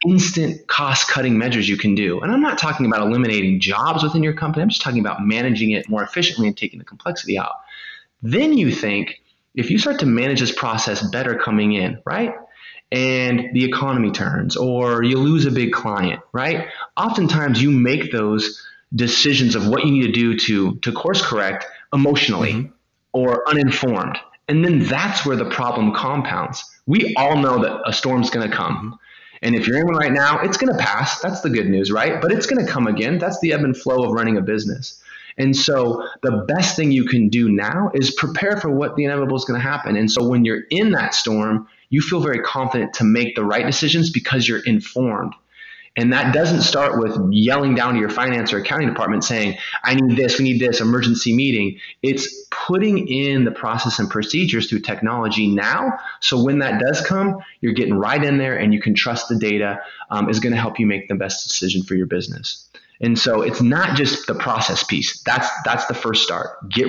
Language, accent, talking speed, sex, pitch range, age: English, American, 210 wpm, male, 110-145 Hz, 20-39